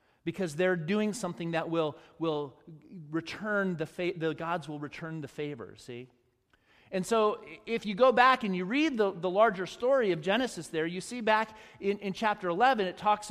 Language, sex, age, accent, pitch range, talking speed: English, male, 30-49, American, 160-210 Hz, 190 wpm